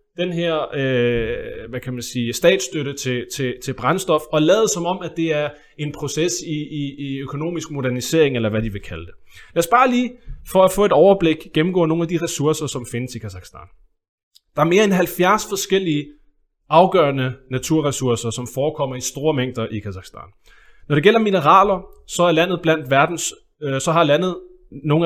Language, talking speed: Danish, 190 wpm